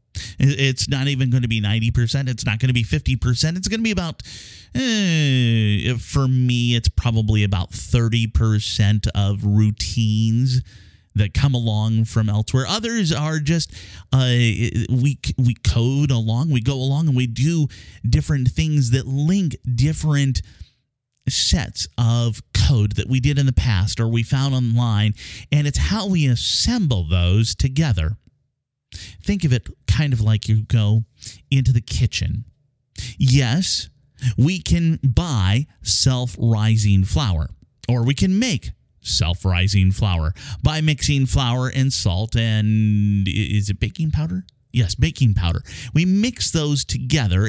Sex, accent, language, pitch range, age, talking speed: male, American, English, 105-135 Hz, 30-49, 140 wpm